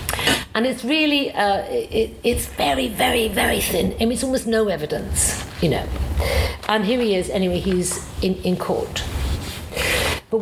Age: 50-69